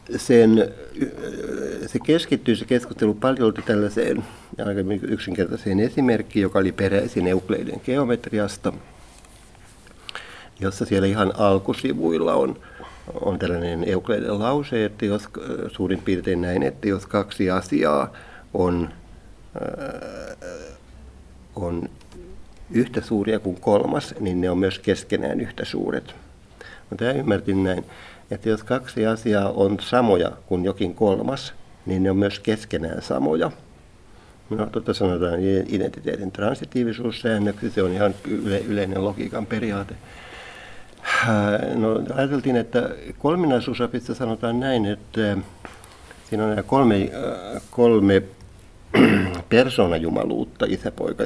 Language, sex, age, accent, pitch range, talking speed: Finnish, male, 60-79, native, 95-115 Hz, 105 wpm